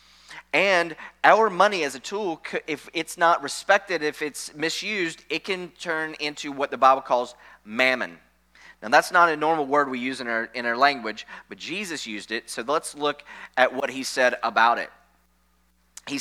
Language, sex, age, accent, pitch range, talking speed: English, male, 30-49, American, 125-165 Hz, 180 wpm